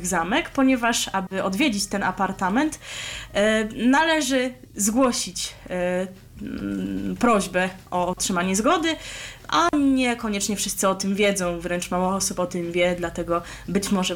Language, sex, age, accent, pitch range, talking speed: Polish, female, 20-39, native, 185-245 Hz, 115 wpm